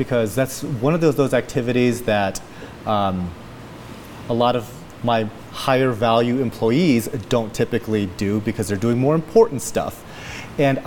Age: 30-49